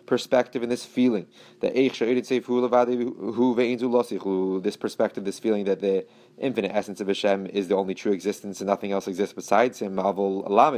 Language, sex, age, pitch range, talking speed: English, male, 30-49, 95-120 Hz, 145 wpm